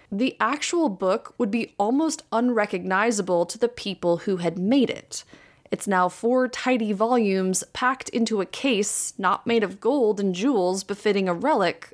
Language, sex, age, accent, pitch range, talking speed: English, female, 20-39, American, 185-250 Hz, 160 wpm